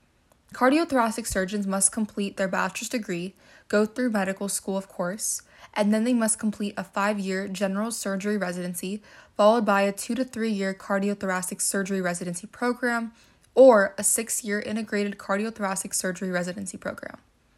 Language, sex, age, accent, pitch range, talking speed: English, female, 20-39, American, 185-215 Hz, 140 wpm